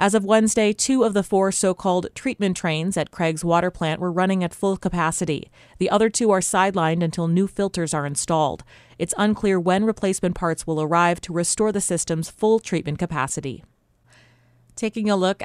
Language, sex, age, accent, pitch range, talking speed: English, female, 30-49, American, 160-205 Hz, 180 wpm